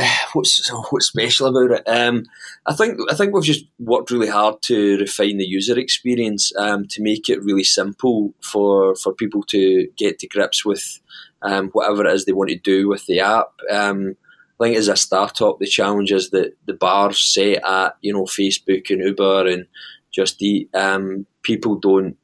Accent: British